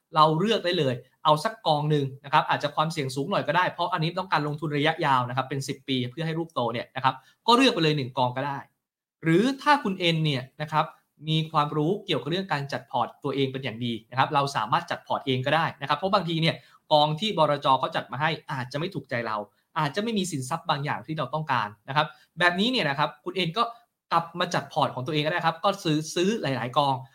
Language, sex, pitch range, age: English, male, 140-185 Hz, 20-39